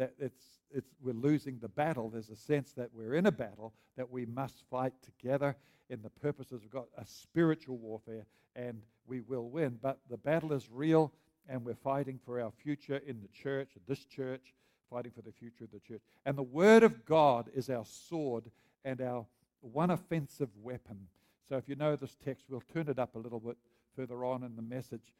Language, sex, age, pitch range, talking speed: English, male, 60-79, 115-140 Hz, 205 wpm